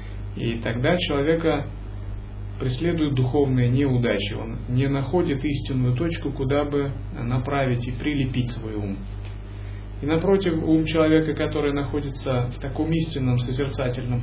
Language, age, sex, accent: Russian, 30-49, male, native